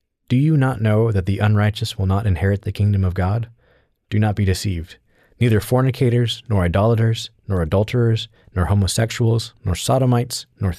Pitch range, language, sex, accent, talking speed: 95-120 Hz, English, male, American, 160 wpm